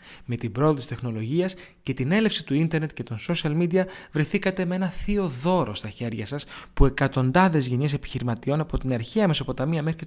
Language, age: Greek, 30-49